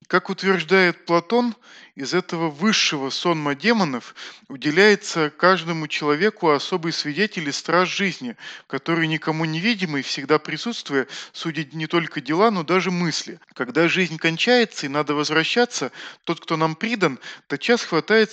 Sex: male